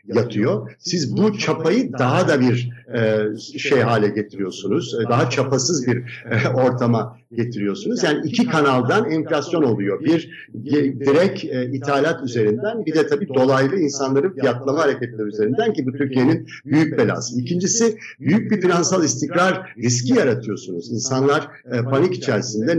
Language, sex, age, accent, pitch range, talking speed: Turkish, male, 60-79, native, 115-145 Hz, 125 wpm